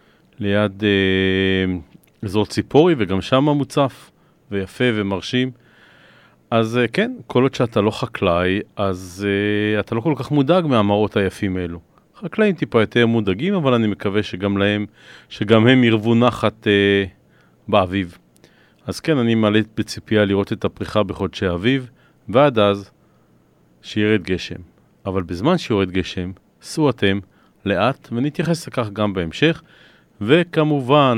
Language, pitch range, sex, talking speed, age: Hebrew, 100-130 Hz, male, 130 wpm, 40-59